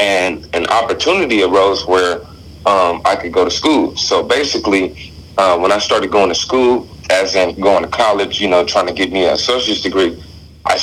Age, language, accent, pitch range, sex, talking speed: 40-59, English, American, 85-100 Hz, male, 195 wpm